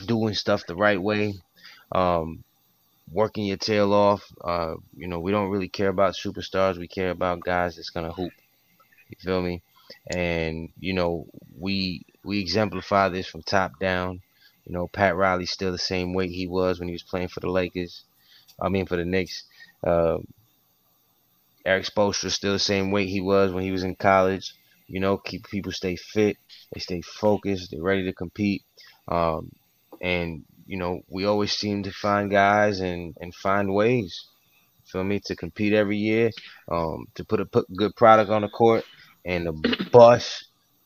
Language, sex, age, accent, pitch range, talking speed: English, male, 20-39, American, 90-100 Hz, 180 wpm